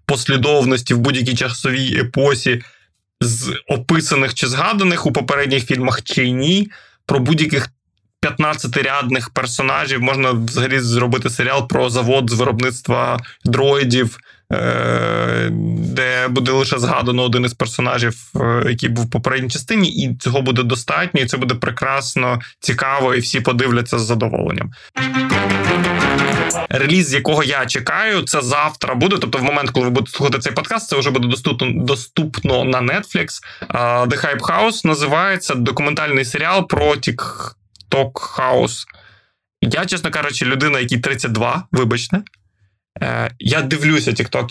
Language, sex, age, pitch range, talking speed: Ukrainian, male, 20-39, 125-150 Hz, 130 wpm